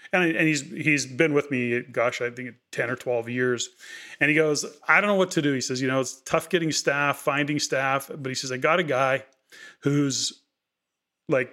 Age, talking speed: 30-49, 215 wpm